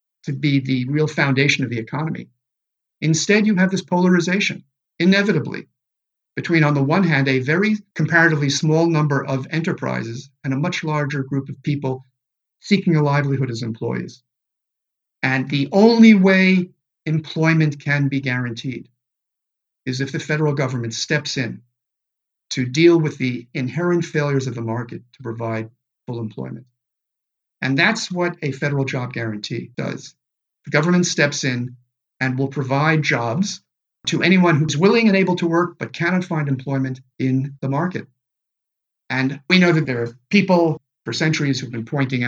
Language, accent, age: English, American, 50-69